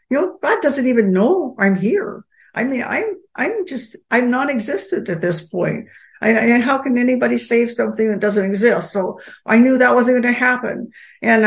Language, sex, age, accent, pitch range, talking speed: English, female, 60-79, American, 195-230 Hz, 190 wpm